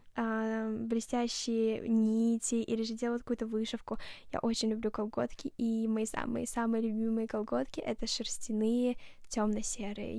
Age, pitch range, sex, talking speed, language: 10-29, 220-245 Hz, female, 120 wpm, Russian